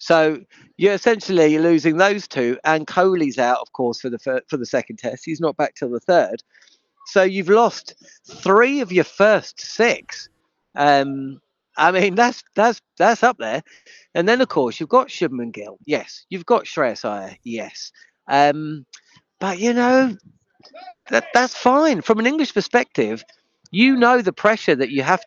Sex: male